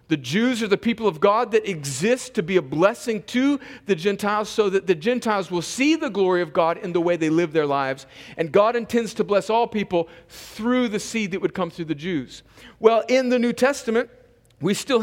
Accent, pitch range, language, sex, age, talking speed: American, 200-245 Hz, English, male, 40-59, 225 wpm